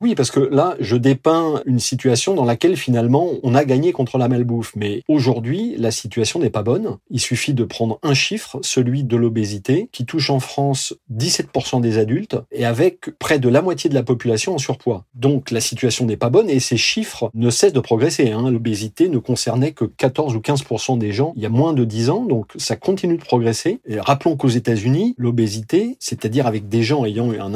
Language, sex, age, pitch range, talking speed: French, male, 40-59, 110-135 Hz, 210 wpm